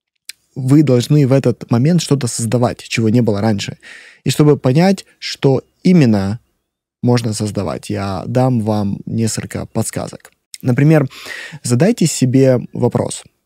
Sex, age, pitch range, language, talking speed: male, 20-39, 115-150 Hz, Russian, 120 wpm